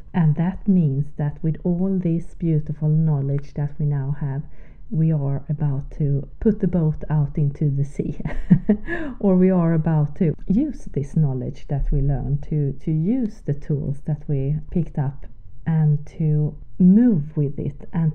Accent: Swedish